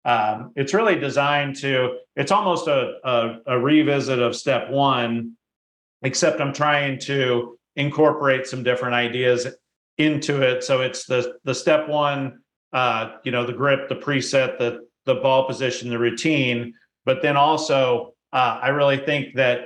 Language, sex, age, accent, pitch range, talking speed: English, male, 40-59, American, 120-140 Hz, 155 wpm